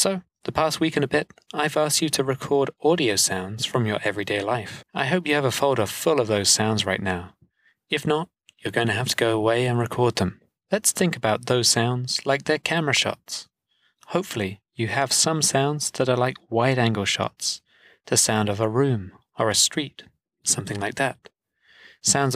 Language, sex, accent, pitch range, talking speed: English, male, British, 105-150 Hz, 195 wpm